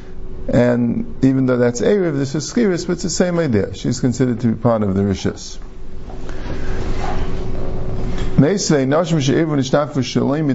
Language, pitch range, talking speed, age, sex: English, 115-160 Hz, 190 wpm, 50-69, male